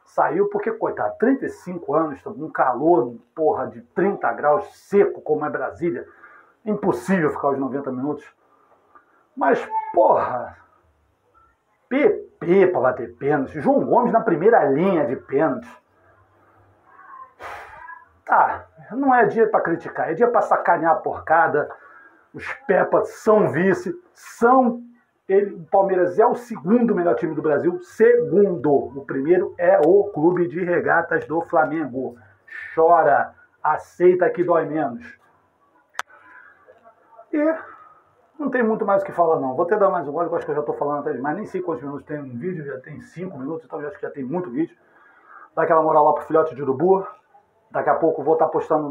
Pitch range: 155-250 Hz